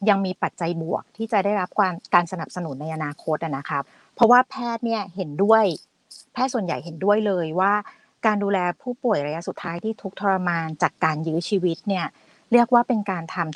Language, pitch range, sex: Thai, 170-225 Hz, female